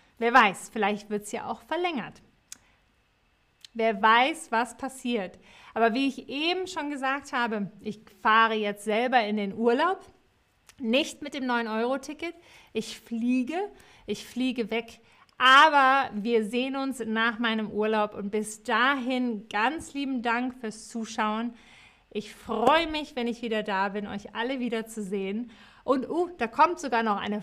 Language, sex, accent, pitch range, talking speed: German, female, German, 210-270 Hz, 150 wpm